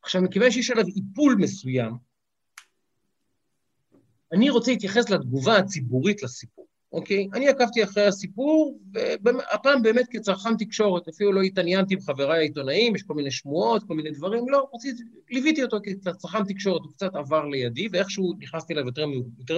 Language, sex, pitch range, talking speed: Hebrew, male, 165-235 Hz, 145 wpm